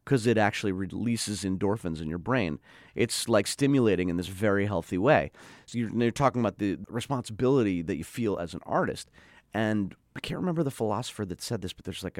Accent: American